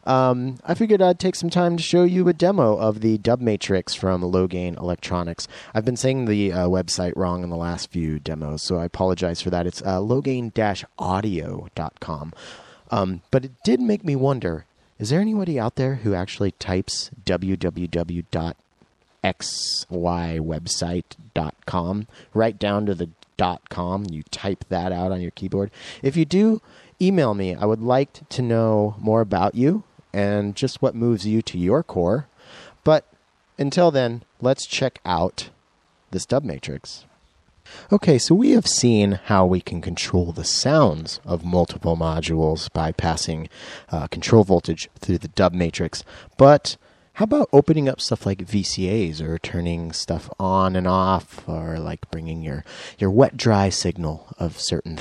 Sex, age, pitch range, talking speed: male, 30-49, 85-130 Hz, 155 wpm